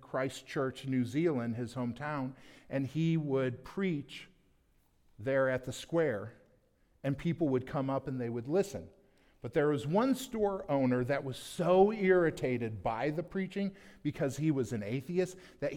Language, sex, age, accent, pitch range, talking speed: English, male, 50-69, American, 130-180 Hz, 160 wpm